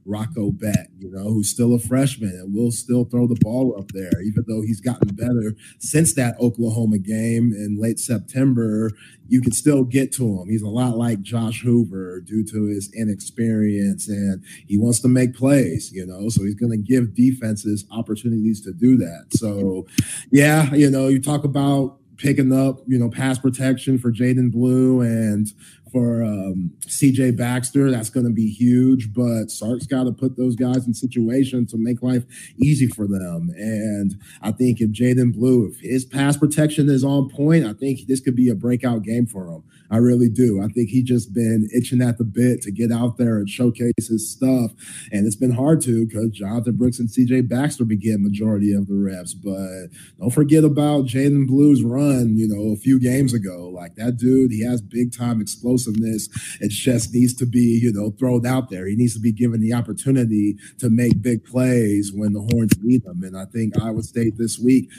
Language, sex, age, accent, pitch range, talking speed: English, male, 30-49, American, 110-130 Hz, 200 wpm